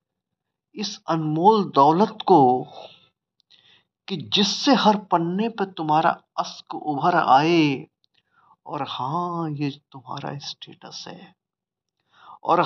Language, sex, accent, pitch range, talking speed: Hindi, male, native, 160-210 Hz, 95 wpm